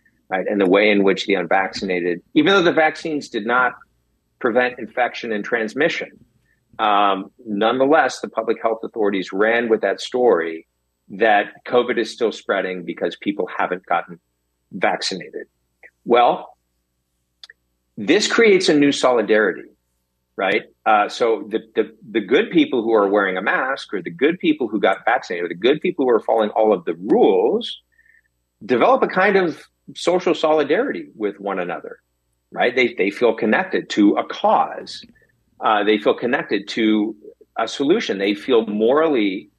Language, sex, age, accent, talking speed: English, male, 50-69, American, 150 wpm